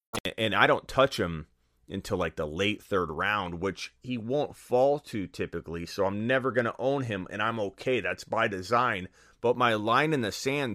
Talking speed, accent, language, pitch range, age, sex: 200 wpm, American, English, 95-130 Hz, 30-49, male